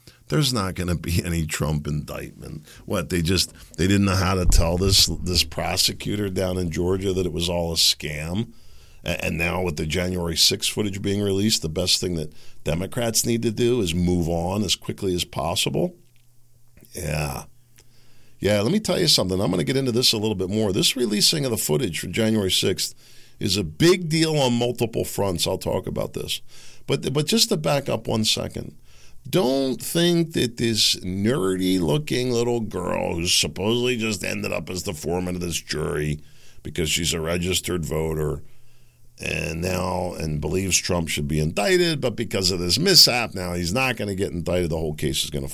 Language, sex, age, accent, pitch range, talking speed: English, male, 50-69, American, 85-115 Hz, 190 wpm